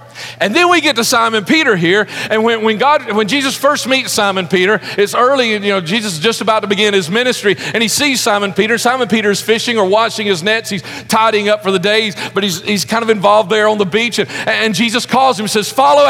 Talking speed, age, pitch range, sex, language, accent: 250 wpm, 40-59, 205-275 Hz, male, English, American